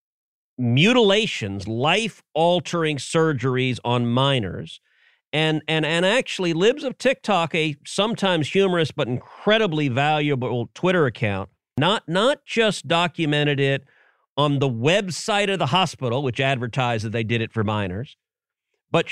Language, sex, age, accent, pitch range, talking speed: English, male, 40-59, American, 140-195 Hz, 130 wpm